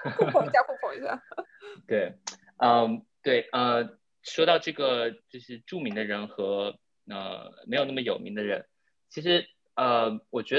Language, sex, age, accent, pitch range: Chinese, male, 20-39, native, 110-170 Hz